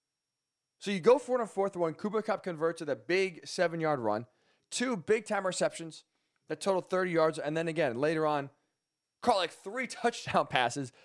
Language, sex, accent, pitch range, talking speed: English, male, American, 145-185 Hz, 185 wpm